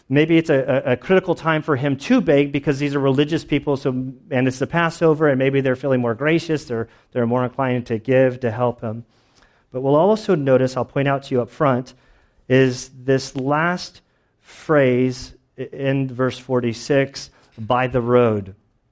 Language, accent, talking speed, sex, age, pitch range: English, American, 185 wpm, male, 40-59, 115-140 Hz